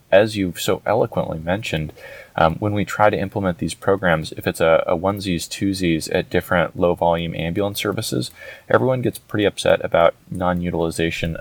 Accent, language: American, English